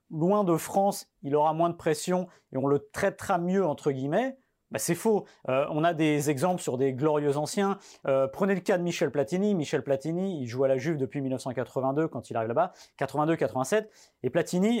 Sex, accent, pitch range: male, French, 135-185 Hz